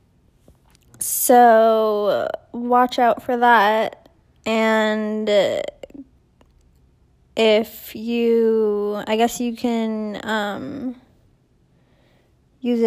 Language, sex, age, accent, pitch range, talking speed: English, female, 10-29, American, 210-235 Hz, 65 wpm